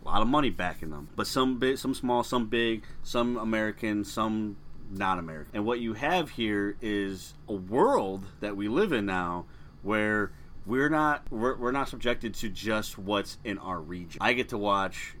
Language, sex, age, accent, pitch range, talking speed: English, male, 30-49, American, 95-135 Hz, 190 wpm